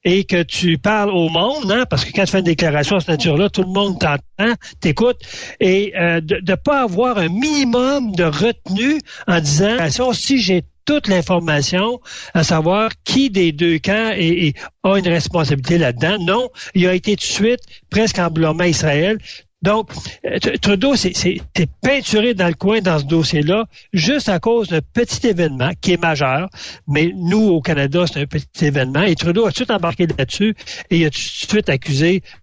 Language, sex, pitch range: French, male, 155-195 Hz